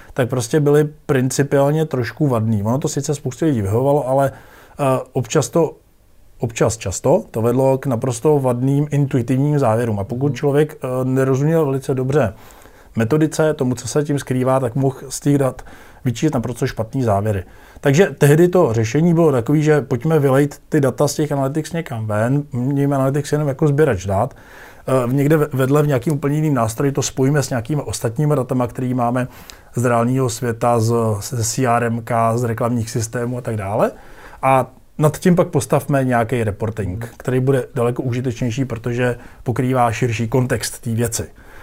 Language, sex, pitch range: Czech, male, 120-150 Hz